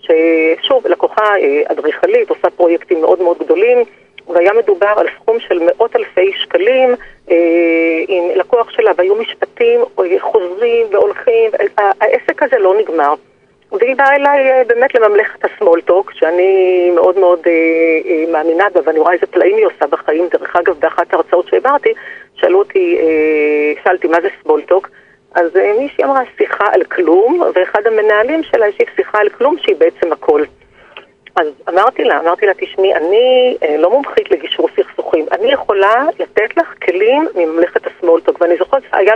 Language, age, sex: Hebrew, 40-59, female